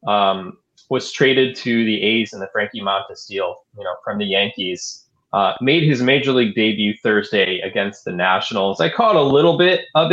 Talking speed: 190 wpm